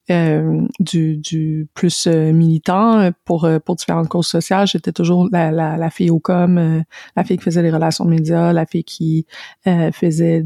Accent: Canadian